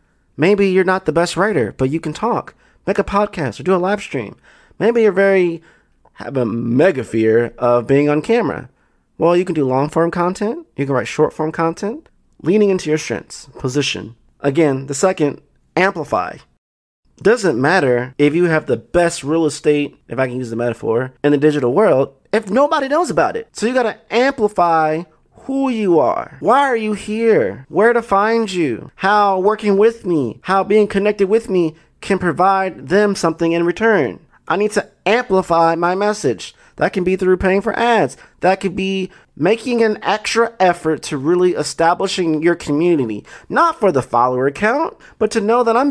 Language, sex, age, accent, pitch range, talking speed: English, male, 30-49, American, 150-210 Hz, 185 wpm